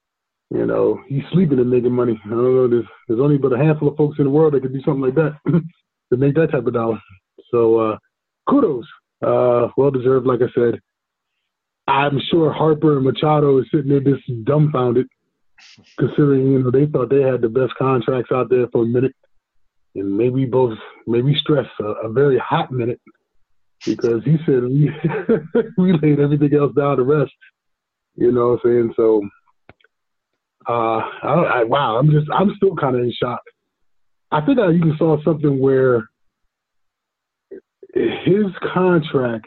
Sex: male